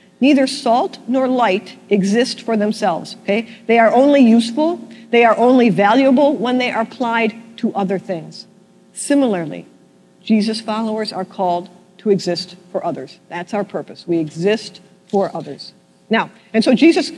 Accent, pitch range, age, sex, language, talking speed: American, 205-270 Hz, 50-69, female, English, 150 wpm